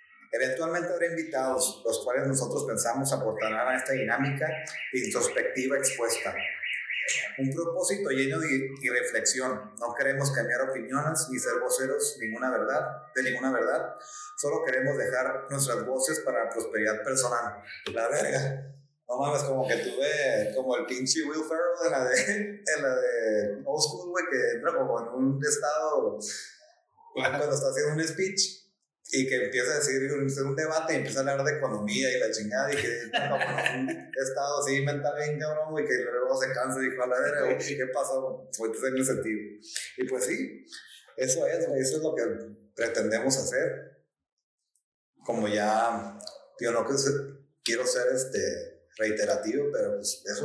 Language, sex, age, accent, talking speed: Spanish, male, 30-49, Mexican, 155 wpm